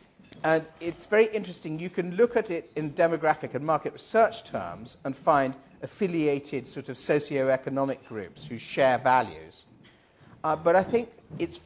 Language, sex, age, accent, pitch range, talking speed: English, male, 50-69, British, 120-170 Hz, 155 wpm